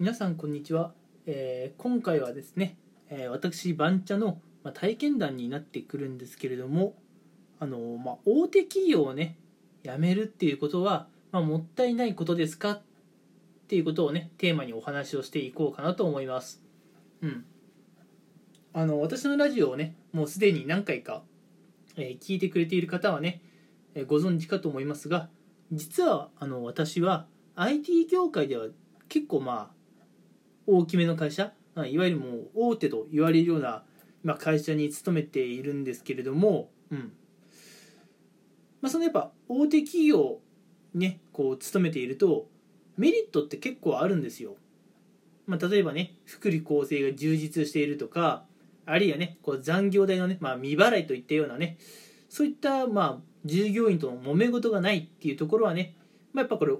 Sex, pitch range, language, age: male, 150-200 Hz, Japanese, 20-39